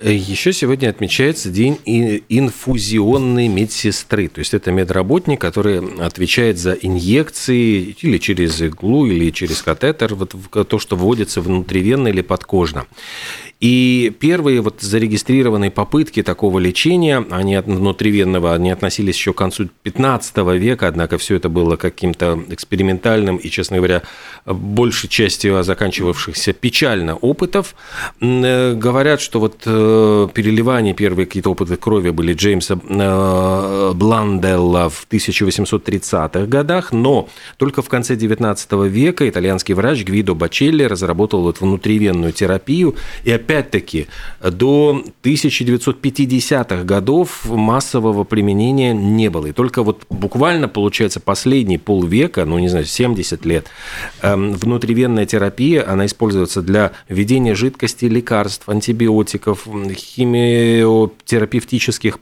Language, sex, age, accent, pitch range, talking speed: Russian, male, 40-59, native, 95-120 Hz, 115 wpm